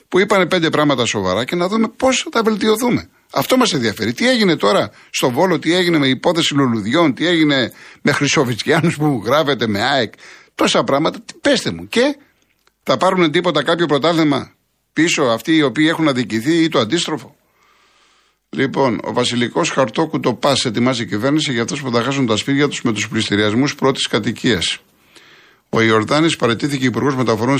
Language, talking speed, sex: Greek, 170 wpm, male